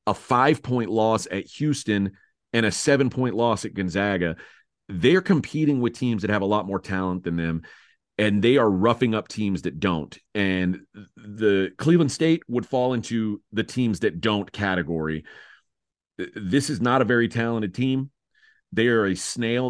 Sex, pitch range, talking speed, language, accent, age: male, 105-135 Hz, 165 wpm, English, American, 40-59